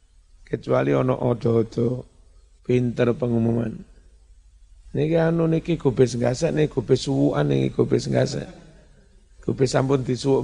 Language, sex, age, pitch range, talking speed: Indonesian, male, 60-79, 80-130 Hz, 110 wpm